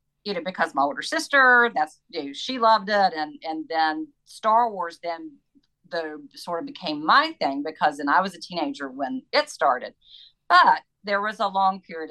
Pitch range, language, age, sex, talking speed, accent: 160-230 Hz, English, 40-59, female, 185 wpm, American